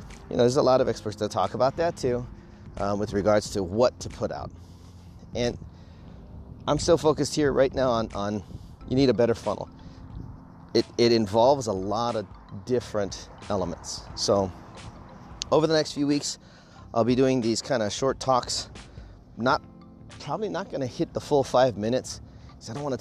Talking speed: 185 wpm